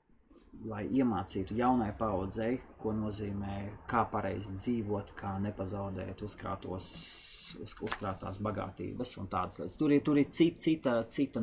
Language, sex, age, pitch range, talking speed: English, male, 30-49, 100-140 Hz, 115 wpm